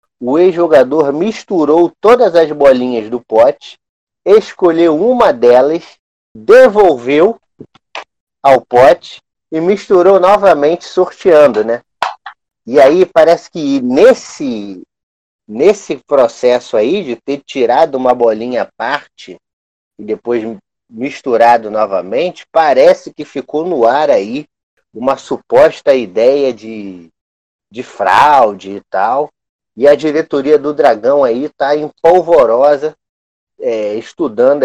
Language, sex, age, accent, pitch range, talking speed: Portuguese, male, 30-49, Brazilian, 115-185 Hz, 105 wpm